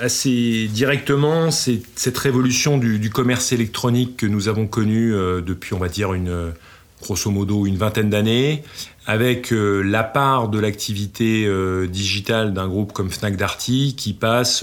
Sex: male